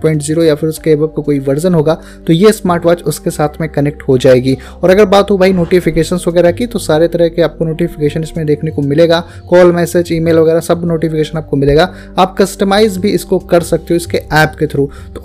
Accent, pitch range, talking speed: native, 150-185 Hz, 230 wpm